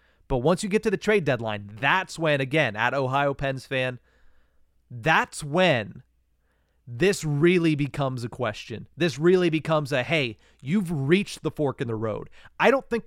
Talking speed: 170 wpm